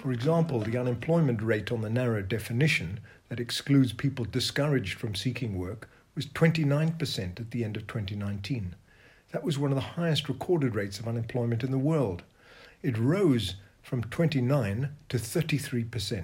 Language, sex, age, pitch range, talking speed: English, male, 50-69, 115-145 Hz, 150 wpm